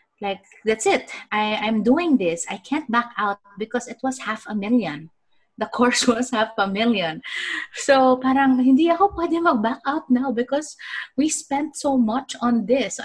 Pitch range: 190-250 Hz